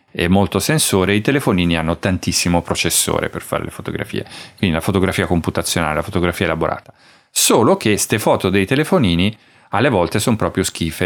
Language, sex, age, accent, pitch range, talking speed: Italian, male, 30-49, native, 90-110 Hz, 165 wpm